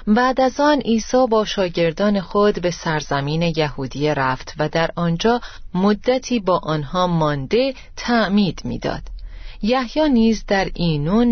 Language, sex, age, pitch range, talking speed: Persian, female, 30-49, 165-230 Hz, 125 wpm